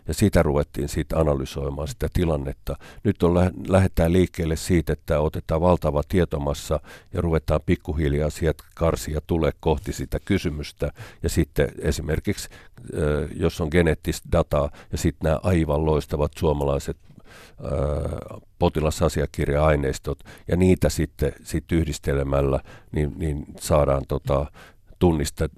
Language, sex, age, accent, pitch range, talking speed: Finnish, male, 50-69, native, 75-90 Hz, 120 wpm